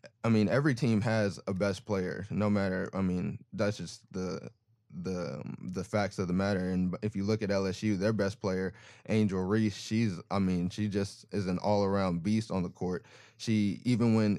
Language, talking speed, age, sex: English, 195 wpm, 20-39, male